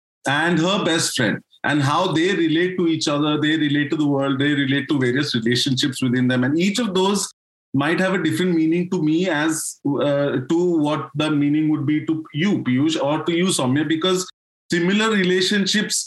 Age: 30-49